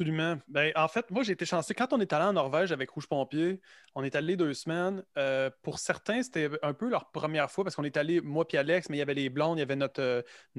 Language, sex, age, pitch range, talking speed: French, male, 20-39, 140-175 Hz, 280 wpm